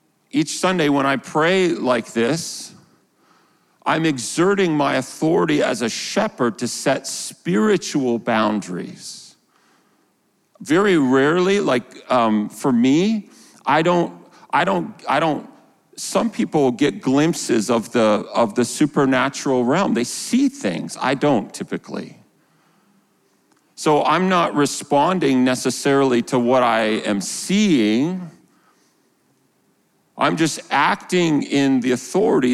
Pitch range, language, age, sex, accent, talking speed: 115-170 Hz, English, 40-59, male, American, 115 wpm